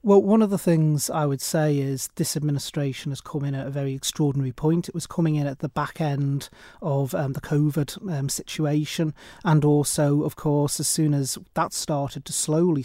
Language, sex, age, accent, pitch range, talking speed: English, male, 30-49, British, 140-160 Hz, 205 wpm